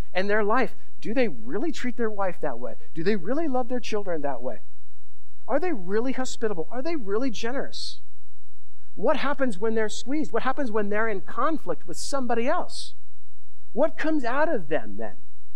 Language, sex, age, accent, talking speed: English, male, 50-69, American, 180 wpm